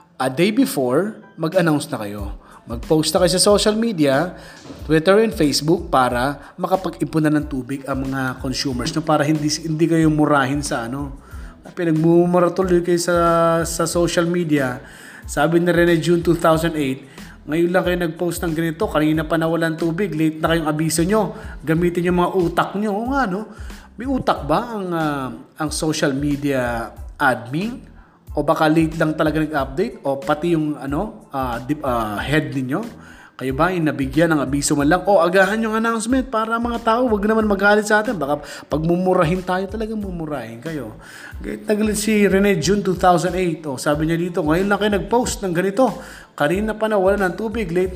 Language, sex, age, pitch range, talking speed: Filipino, male, 20-39, 150-190 Hz, 170 wpm